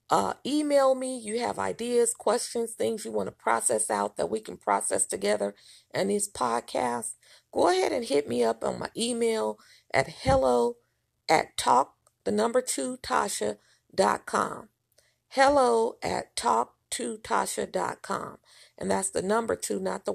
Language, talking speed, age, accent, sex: English, 150 wpm, 40-59, American, female